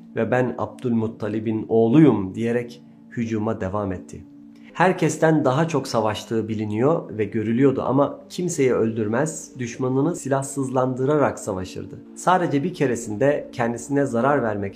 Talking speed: 110 wpm